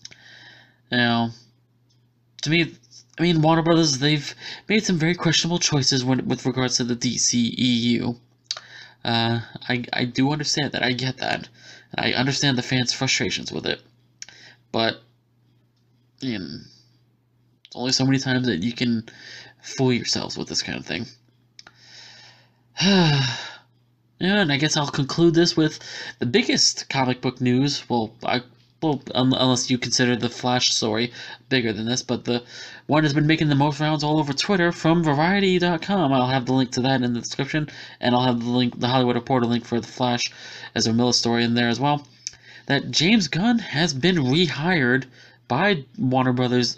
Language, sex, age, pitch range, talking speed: English, male, 20-39, 120-150 Hz, 165 wpm